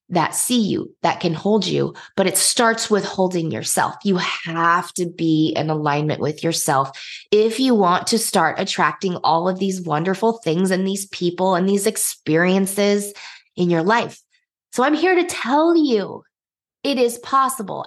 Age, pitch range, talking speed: 20-39, 150-195 Hz, 170 wpm